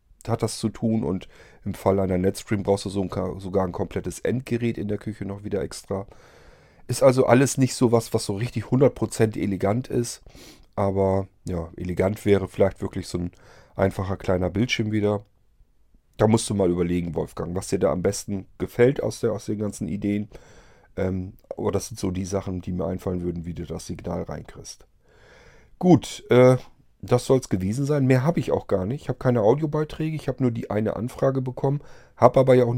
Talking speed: 190 wpm